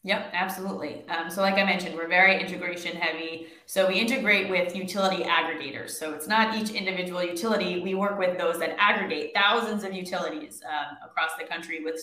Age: 20-39